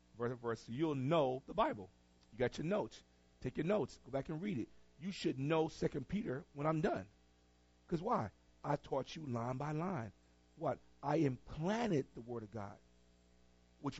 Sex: male